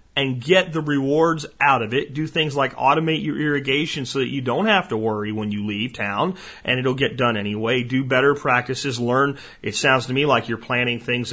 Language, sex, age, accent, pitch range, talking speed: English, male, 40-59, American, 120-180 Hz, 220 wpm